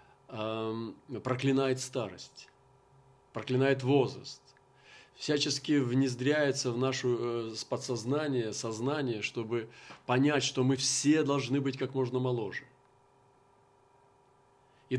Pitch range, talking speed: 120-145 Hz, 85 wpm